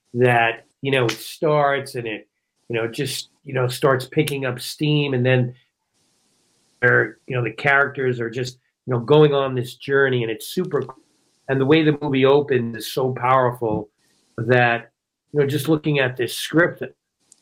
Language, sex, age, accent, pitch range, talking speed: English, male, 40-59, American, 125-145 Hz, 180 wpm